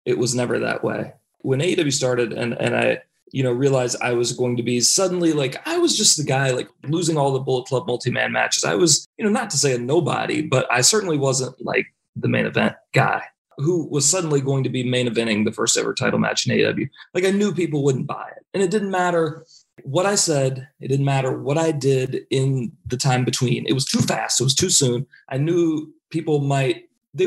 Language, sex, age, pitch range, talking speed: English, male, 30-49, 125-165 Hz, 230 wpm